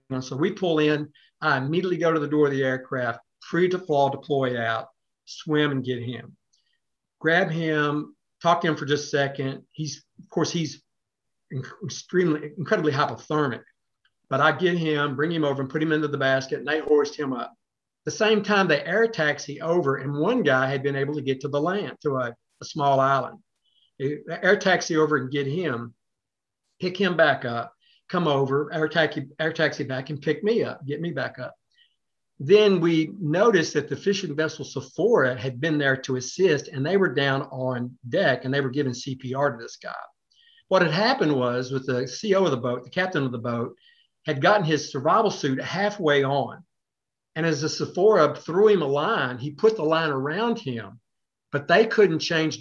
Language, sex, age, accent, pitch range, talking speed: English, male, 50-69, American, 135-170 Hz, 195 wpm